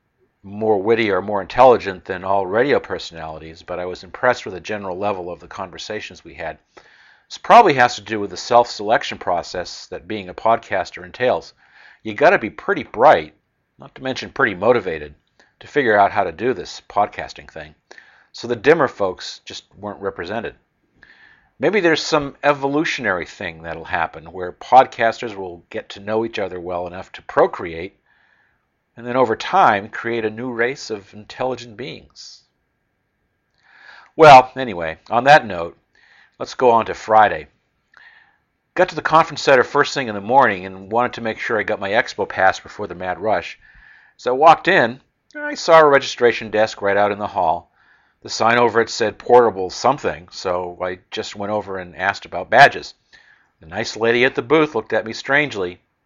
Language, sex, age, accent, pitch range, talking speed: English, male, 50-69, American, 95-130 Hz, 180 wpm